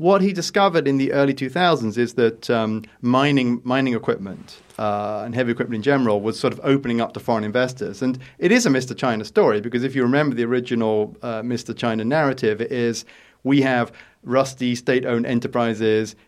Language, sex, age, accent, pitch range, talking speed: English, male, 30-49, British, 110-135 Hz, 190 wpm